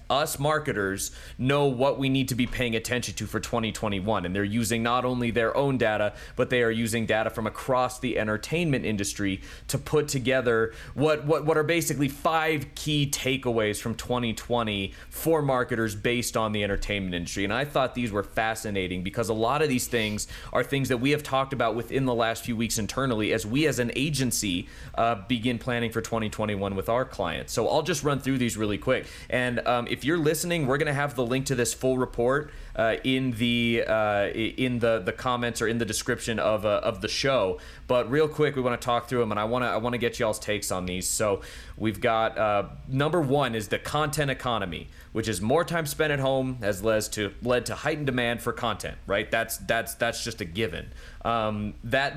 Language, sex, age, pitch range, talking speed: English, male, 30-49, 105-130 Hz, 210 wpm